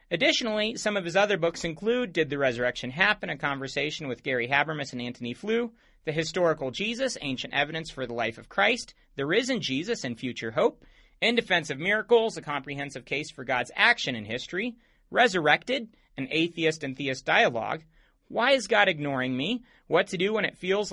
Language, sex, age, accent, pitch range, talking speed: English, male, 30-49, American, 140-215 Hz, 185 wpm